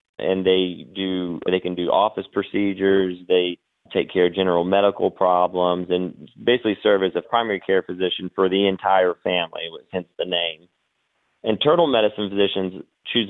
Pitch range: 90-105 Hz